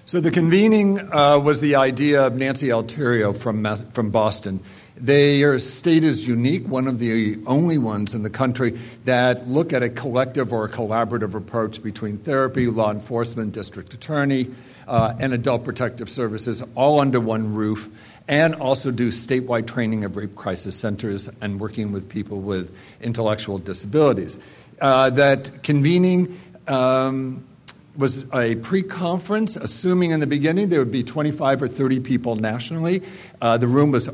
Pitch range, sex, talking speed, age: 115-140 Hz, male, 155 wpm, 60-79